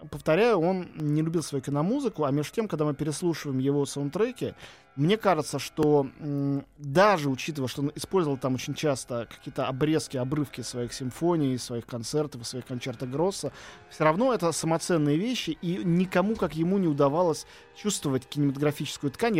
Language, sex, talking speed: Russian, male, 155 wpm